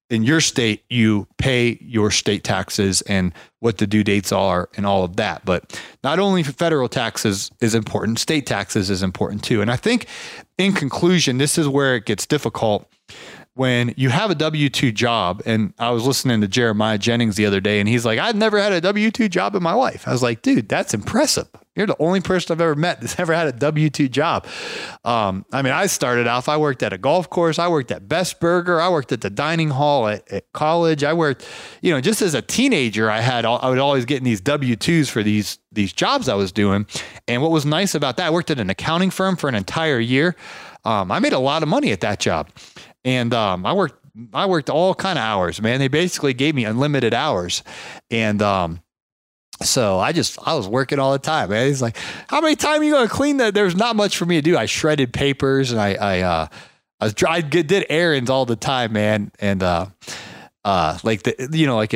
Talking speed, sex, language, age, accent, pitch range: 230 wpm, male, English, 30-49, American, 110-160 Hz